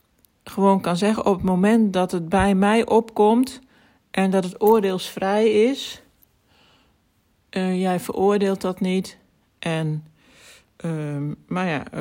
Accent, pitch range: Dutch, 150-185 Hz